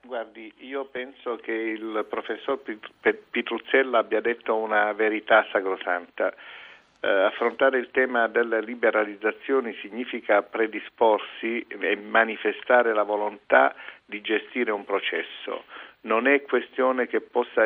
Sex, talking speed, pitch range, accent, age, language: male, 110 wpm, 105-130 Hz, native, 50-69, Italian